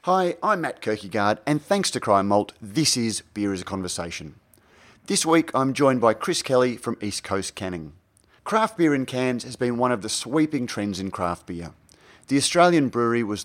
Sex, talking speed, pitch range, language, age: male, 195 wpm, 100-130 Hz, English, 30-49